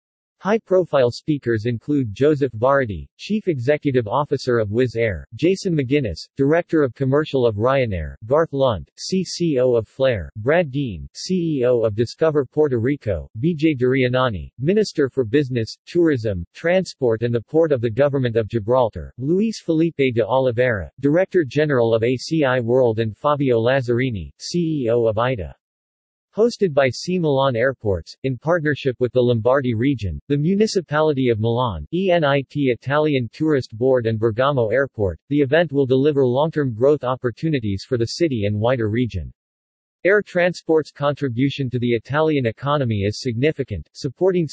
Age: 50-69